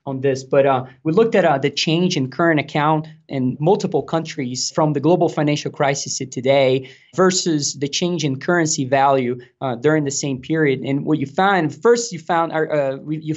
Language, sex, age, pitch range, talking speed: English, male, 20-39, 135-165 Hz, 190 wpm